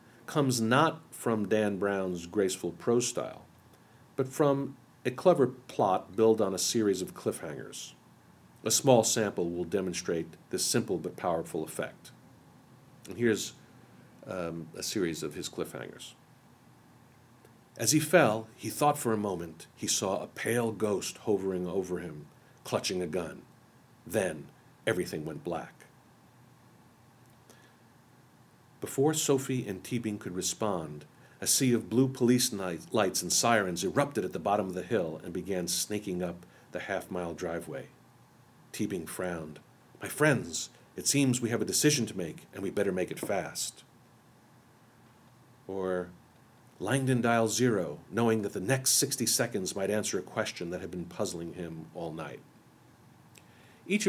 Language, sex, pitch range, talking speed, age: English, male, 90-130 Hz, 140 wpm, 50-69